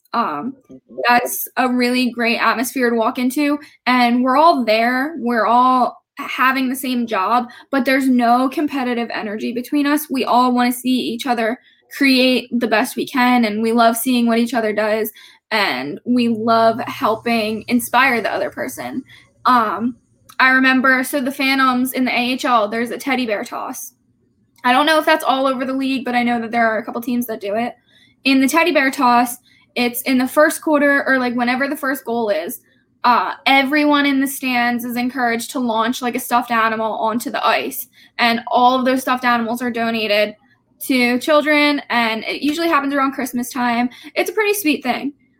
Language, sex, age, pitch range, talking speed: English, female, 10-29, 235-275 Hz, 190 wpm